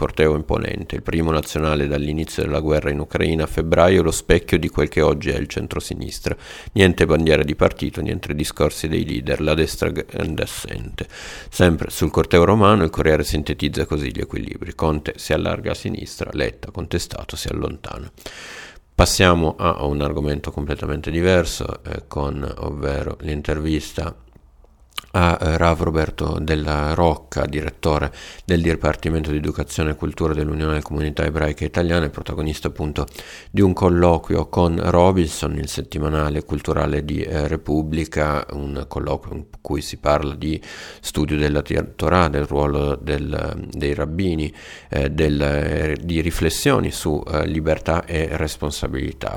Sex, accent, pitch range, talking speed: male, native, 75-85 Hz, 140 wpm